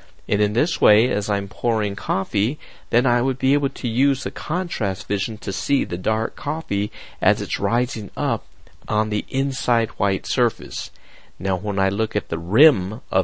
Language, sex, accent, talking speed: English, male, American, 180 wpm